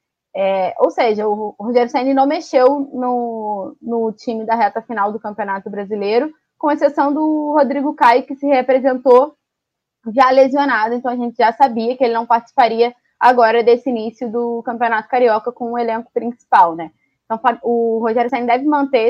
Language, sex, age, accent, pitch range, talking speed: Portuguese, female, 20-39, Brazilian, 225-275 Hz, 170 wpm